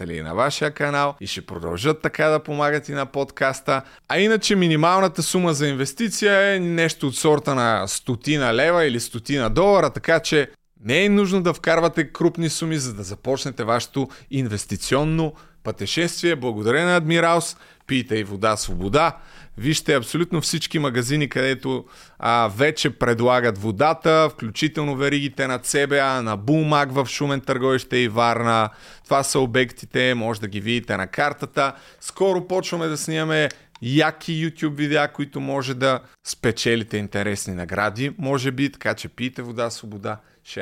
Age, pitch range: 30-49, 125-155 Hz